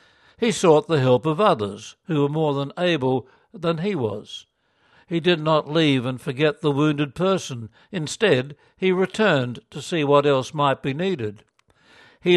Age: 60-79